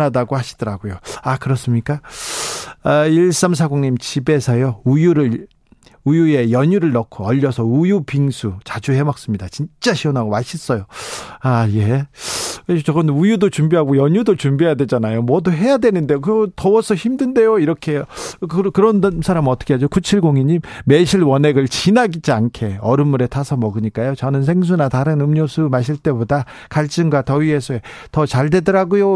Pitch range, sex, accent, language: 130-175 Hz, male, native, Korean